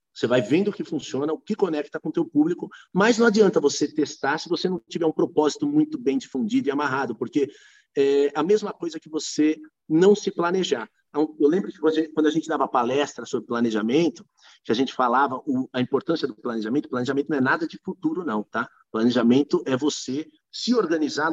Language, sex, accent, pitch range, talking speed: Portuguese, male, Brazilian, 140-200 Hz, 205 wpm